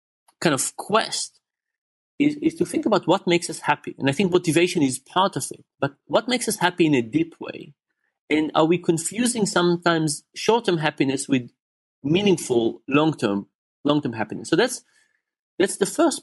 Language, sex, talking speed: English, male, 170 wpm